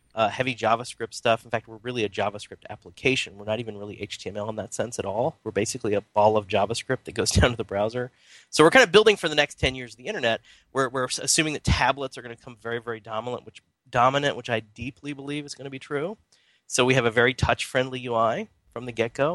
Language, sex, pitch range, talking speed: English, male, 110-140 Hz, 250 wpm